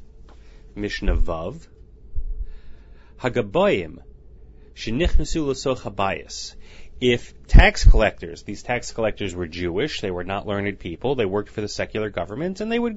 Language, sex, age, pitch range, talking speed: English, male, 30-49, 95-125 Hz, 110 wpm